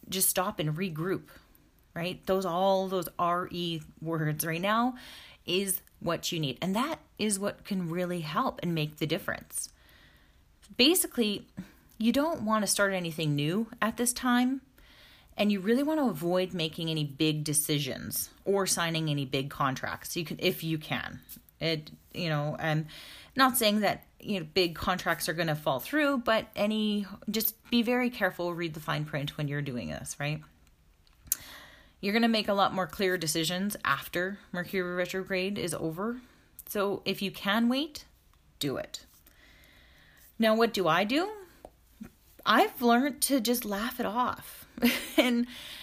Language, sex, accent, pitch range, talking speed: English, female, American, 165-235 Hz, 160 wpm